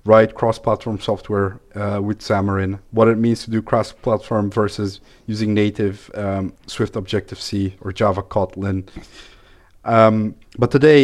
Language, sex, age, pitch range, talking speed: English, male, 30-49, 100-120 Hz, 130 wpm